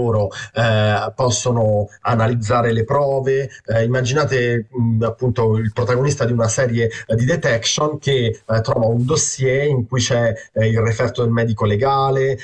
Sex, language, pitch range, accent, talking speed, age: male, Italian, 115-140 Hz, native, 150 wpm, 30-49